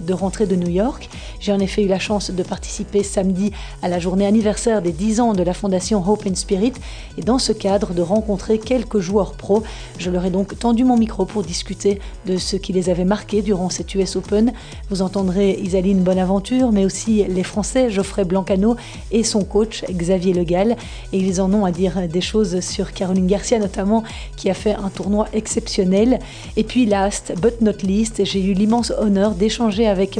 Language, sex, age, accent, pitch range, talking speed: French, female, 40-59, French, 190-220 Hz, 200 wpm